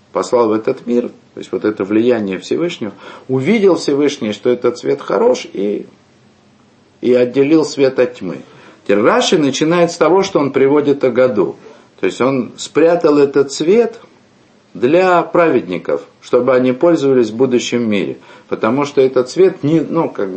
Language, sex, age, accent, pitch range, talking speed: Russian, male, 50-69, native, 115-165 Hz, 155 wpm